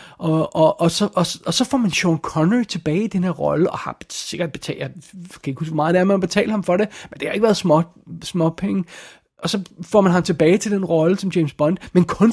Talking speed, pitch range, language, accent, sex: 260 wpm, 160-210 Hz, Danish, native, male